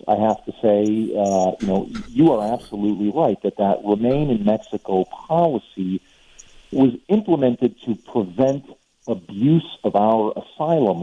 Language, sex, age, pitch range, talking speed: English, male, 50-69, 105-135 Hz, 135 wpm